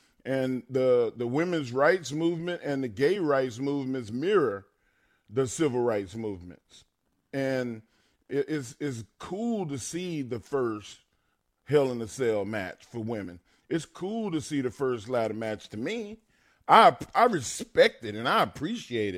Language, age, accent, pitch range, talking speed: English, 40-59, American, 120-155 Hz, 155 wpm